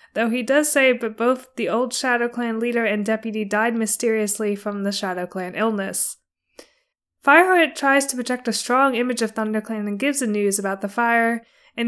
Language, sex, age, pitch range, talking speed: English, female, 20-39, 210-250 Hz, 185 wpm